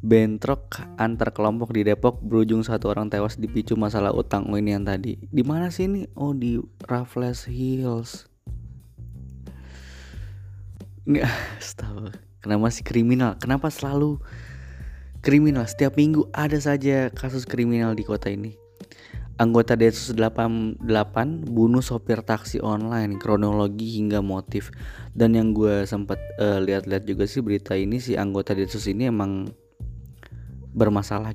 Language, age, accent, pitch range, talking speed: Indonesian, 20-39, native, 100-115 Hz, 125 wpm